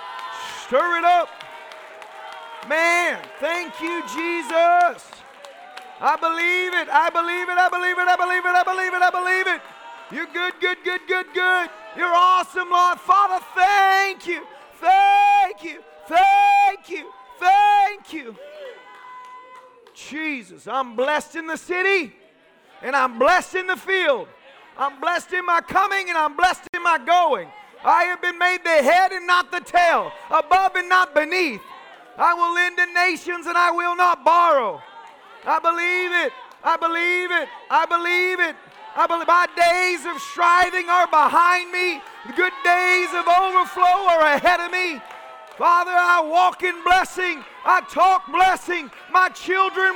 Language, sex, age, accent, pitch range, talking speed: English, male, 40-59, American, 340-370 Hz, 150 wpm